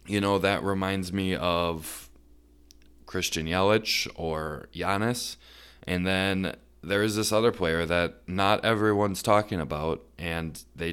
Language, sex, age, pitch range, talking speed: English, male, 20-39, 85-100 Hz, 130 wpm